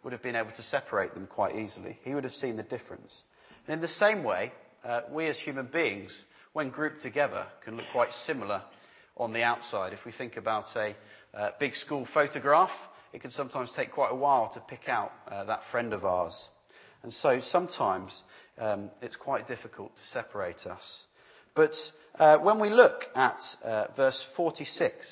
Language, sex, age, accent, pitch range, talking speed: English, male, 40-59, British, 115-155 Hz, 185 wpm